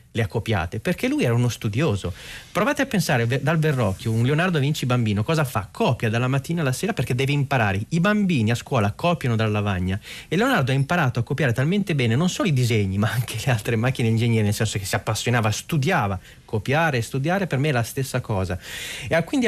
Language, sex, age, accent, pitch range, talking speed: Italian, male, 30-49, native, 110-150 Hz, 215 wpm